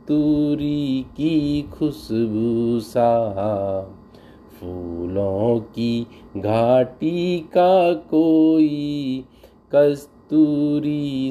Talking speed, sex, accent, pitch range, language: 55 wpm, male, native, 115-150 Hz, Hindi